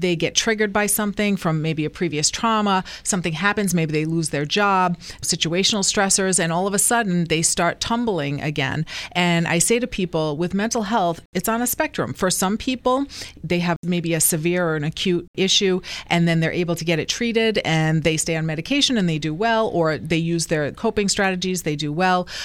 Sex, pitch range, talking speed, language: female, 165-205 Hz, 210 wpm, English